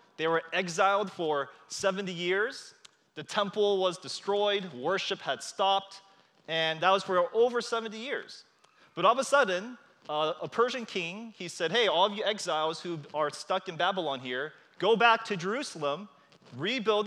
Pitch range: 150-205 Hz